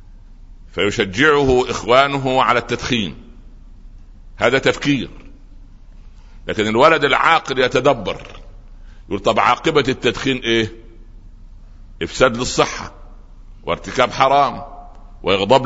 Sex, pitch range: male, 95-130 Hz